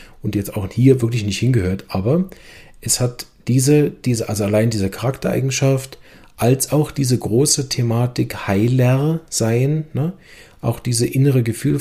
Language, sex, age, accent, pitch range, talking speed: German, male, 40-59, German, 105-140 Hz, 140 wpm